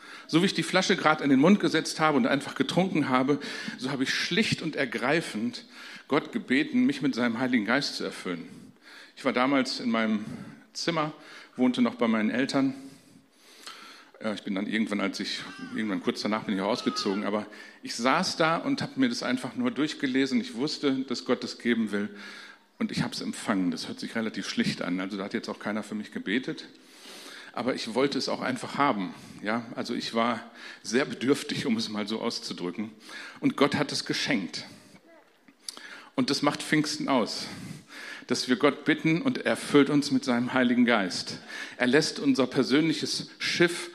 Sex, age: male, 50-69